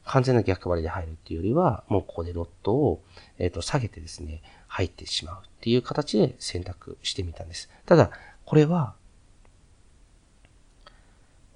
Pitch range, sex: 90-145 Hz, male